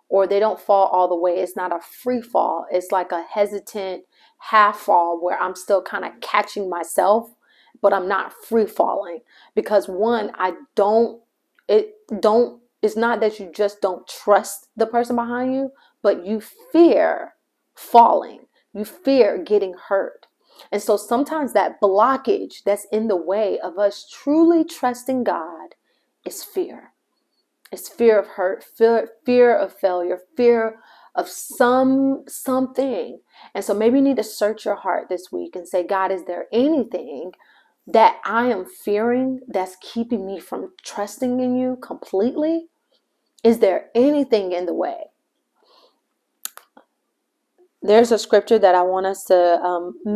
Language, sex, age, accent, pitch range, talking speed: English, female, 30-49, American, 190-250 Hz, 150 wpm